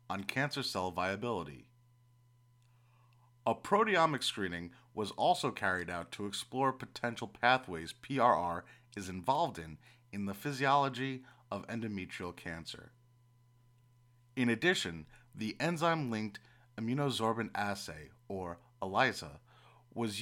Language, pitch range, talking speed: English, 100-125 Hz, 100 wpm